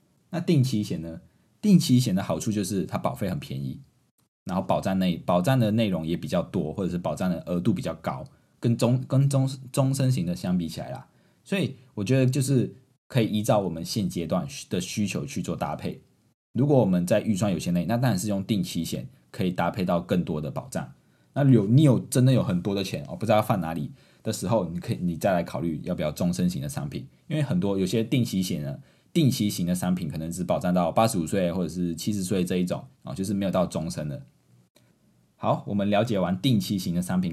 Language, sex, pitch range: Chinese, male, 90-135 Hz